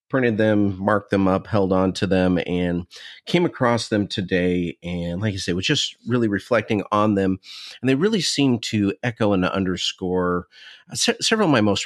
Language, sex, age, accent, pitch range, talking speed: English, male, 40-59, American, 90-110 Hz, 180 wpm